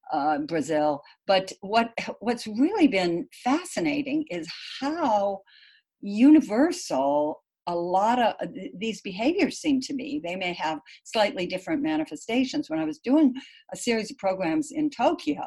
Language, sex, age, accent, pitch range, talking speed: English, female, 60-79, American, 185-300 Hz, 140 wpm